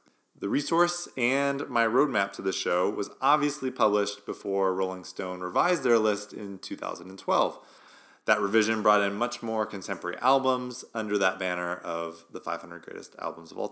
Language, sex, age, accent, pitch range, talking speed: English, male, 30-49, American, 95-135 Hz, 160 wpm